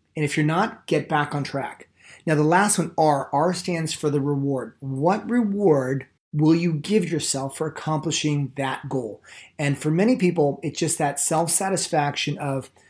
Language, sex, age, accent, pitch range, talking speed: English, male, 30-49, American, 145-180 Hz, 170 wpm